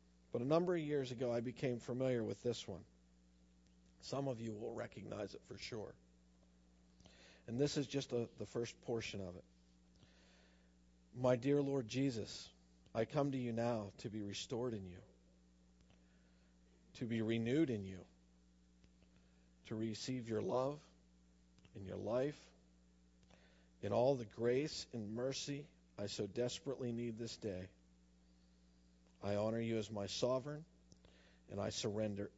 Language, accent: English, American